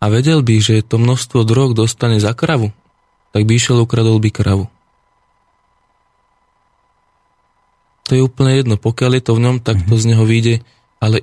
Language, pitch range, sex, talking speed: Slovak, 105-120 Hz, male, 165 wpm